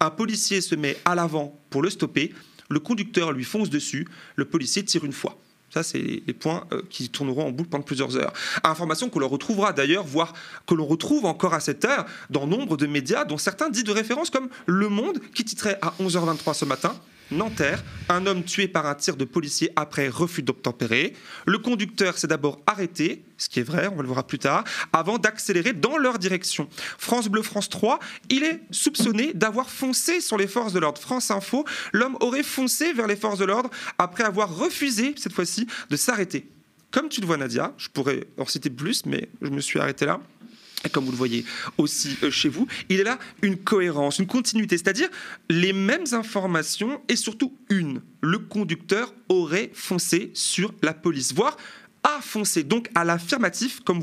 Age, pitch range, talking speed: 30-49, 160-230 Hz, 195 wpm